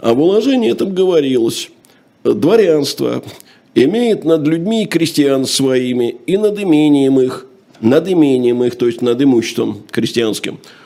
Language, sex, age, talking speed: Russian, male, 50-69, 125 wpm